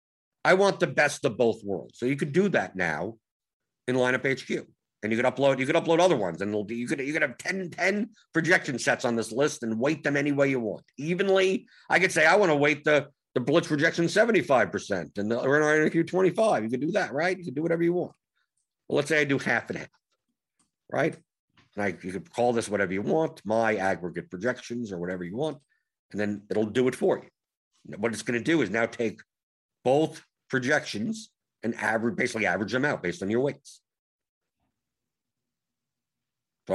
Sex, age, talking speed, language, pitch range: male, 50-69, 210 wpm, English, 110-155 Hz